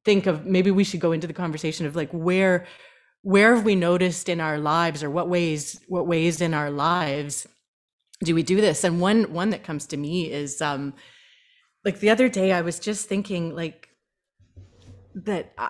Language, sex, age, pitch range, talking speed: English, female, 30-49, 175-230 Hz, 190 wpm